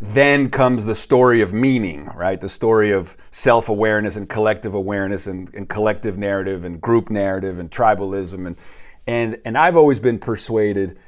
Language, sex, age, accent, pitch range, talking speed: English, male, 30-49, American, 100-120 Hz, 160 wpm